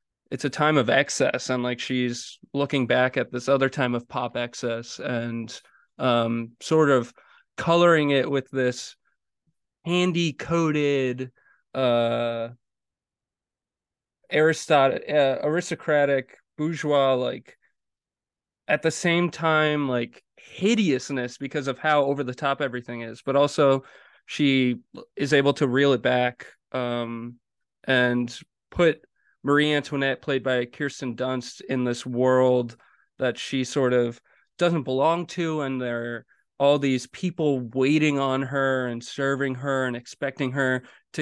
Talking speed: 130 wpm